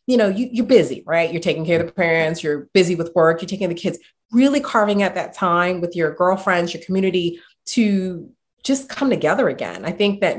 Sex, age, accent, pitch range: female, 30-49, American, 160-195 Hz